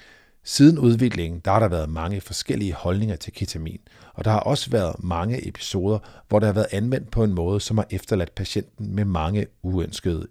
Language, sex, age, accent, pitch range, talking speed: Danish, male, 50-69, native, 90-120 Hz, 190 wpm